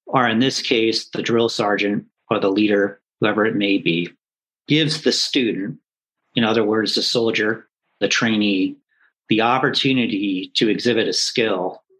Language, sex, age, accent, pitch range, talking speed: English, male, 40-59, American, 110-140 Hz, 150 wpm